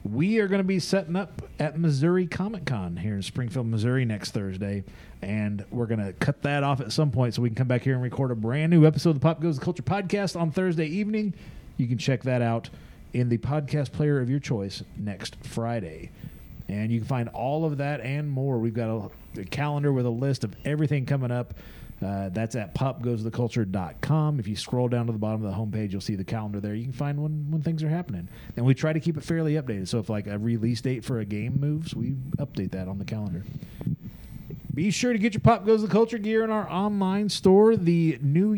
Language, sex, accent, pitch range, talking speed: English, male, American, 115-160 Hz, 230 wpm